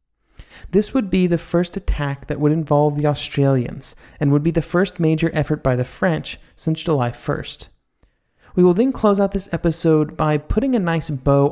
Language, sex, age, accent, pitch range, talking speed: English, male, 30-49, American, 130-170 Hz, 190 wpm